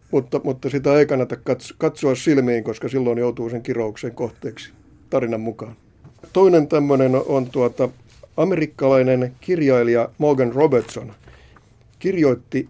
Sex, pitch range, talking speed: male, 115-140 Hz, 115 wpm